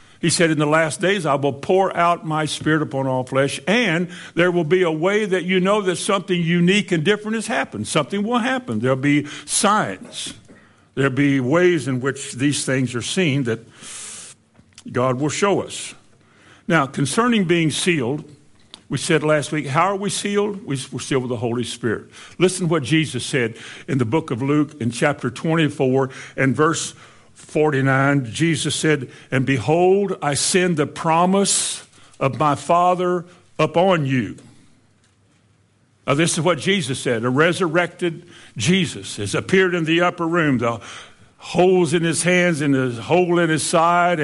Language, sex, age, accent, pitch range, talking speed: English, male, 60-79, American, 135-175 Hz, 170 wpm